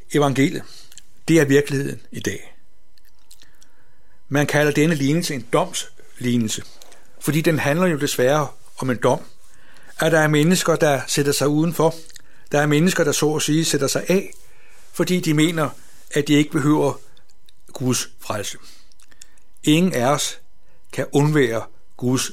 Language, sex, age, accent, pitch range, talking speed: Danish, male, 60-79, native, 130-155 Hz, 140 wpm